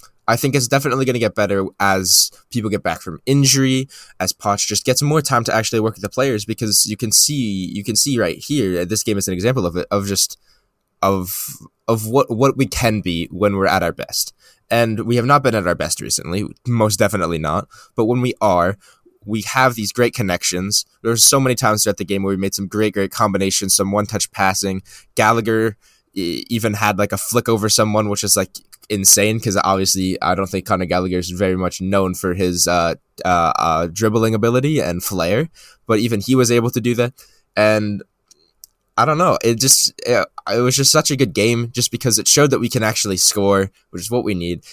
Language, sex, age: English, male, 10-29